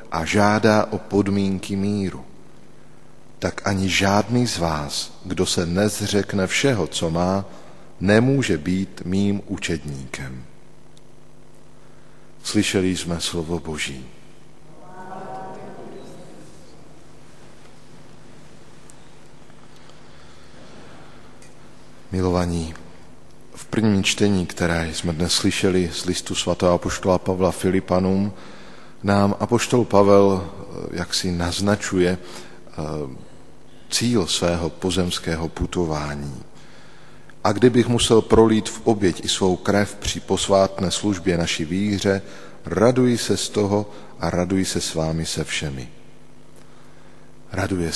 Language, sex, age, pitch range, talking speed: Slovak, male, 50-69, 85-100 Hz, 90 wpm